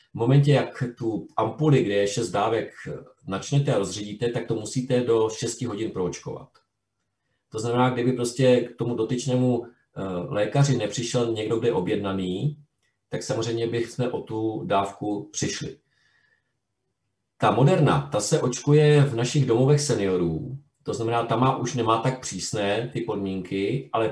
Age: 40-59